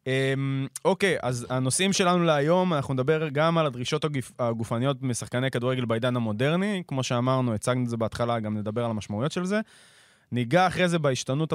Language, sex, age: Hebrew, male, 20-39